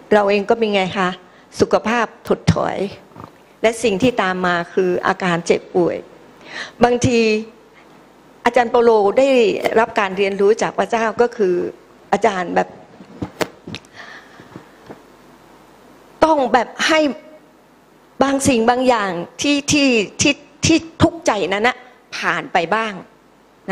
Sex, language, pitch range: female, Thai, 190-245 Hz